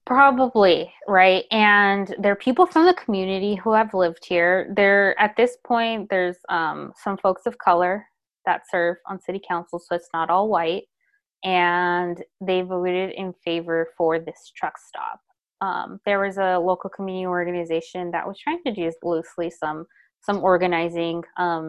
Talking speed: 160 wpm